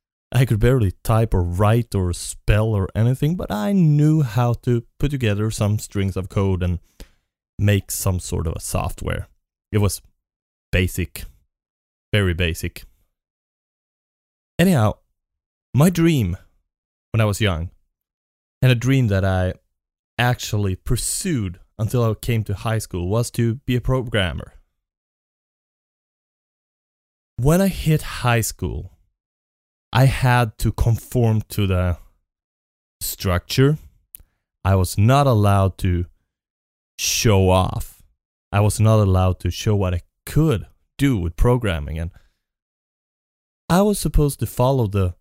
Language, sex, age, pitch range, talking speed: English, male, 20-39, 85-120 Hz, 125 wpm